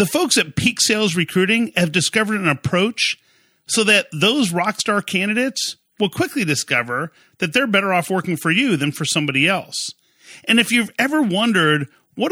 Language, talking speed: English, 175 wpm